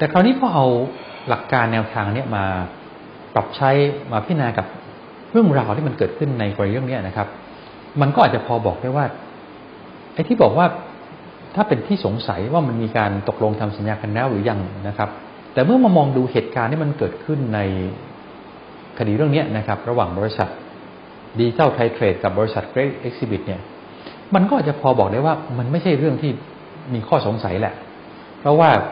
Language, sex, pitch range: English, male, 105-150 Hz